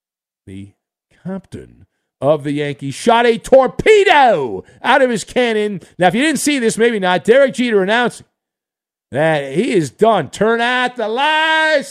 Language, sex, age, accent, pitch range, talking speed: English, male, 50-69, American, 140-210 Hz, 155 wpm